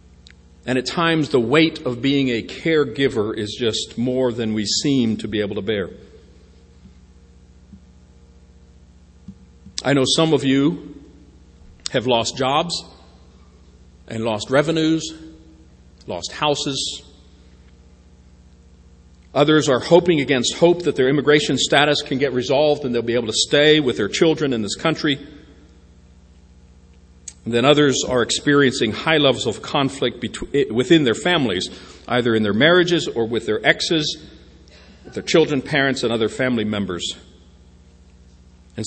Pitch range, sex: 85-140 Hz, male